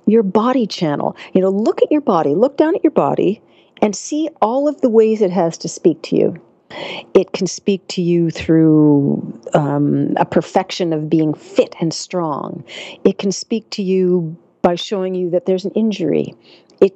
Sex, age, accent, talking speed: female, 50-69, American, 190 wpm